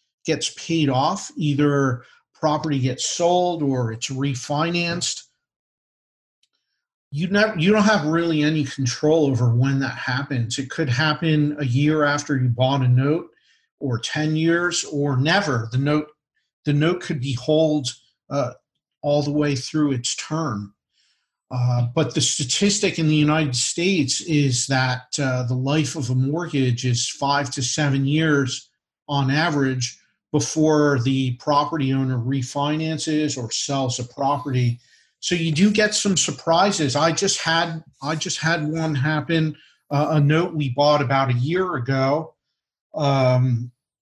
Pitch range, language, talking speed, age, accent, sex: 135-160 Hz, English, 145 wpm, 50-69, American, male